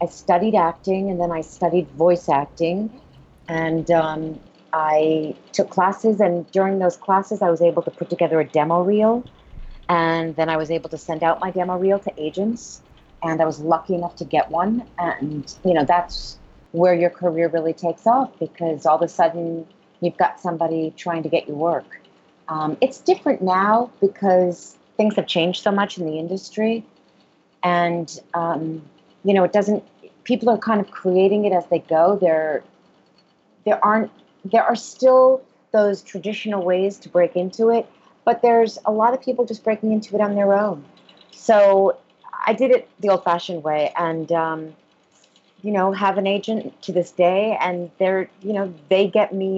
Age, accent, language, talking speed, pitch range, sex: 30-49, American, English, 180 wpm, 165-205 Hz, female